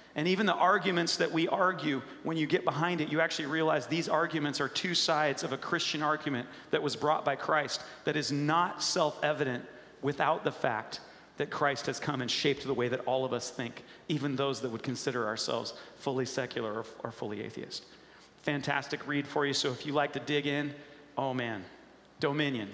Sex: male